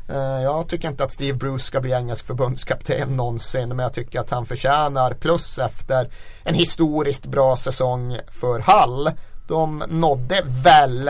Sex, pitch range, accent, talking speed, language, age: male, 120-140 Hz, native, 150 wpm, Swedish, 30-49